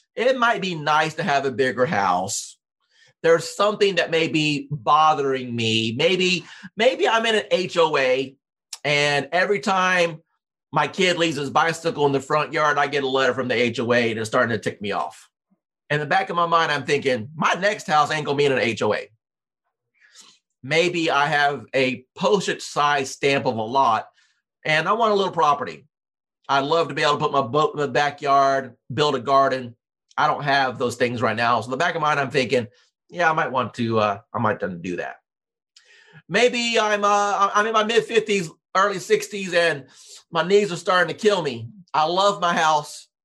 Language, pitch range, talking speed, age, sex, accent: English, 140-190 Hz, 195 wpm, 40-59, male, American